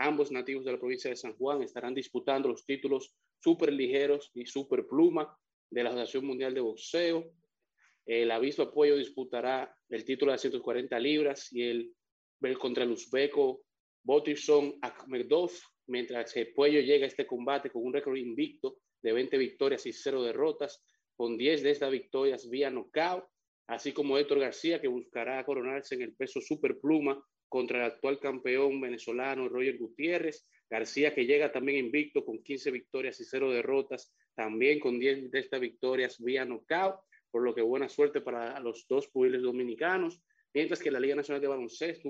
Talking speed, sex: 170 wpm, male